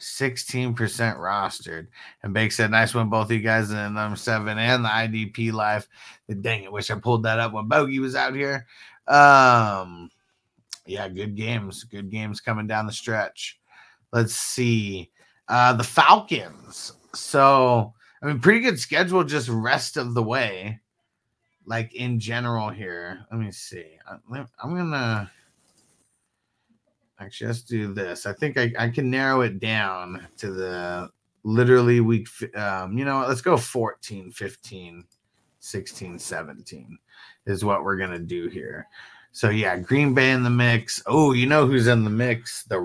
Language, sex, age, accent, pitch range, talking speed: English, male, 30-49, American, 105-125 Hz, 155 wpm